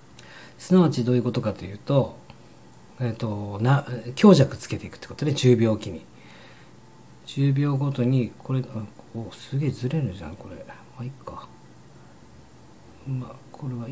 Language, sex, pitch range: Japanese, male, 105-140 Hz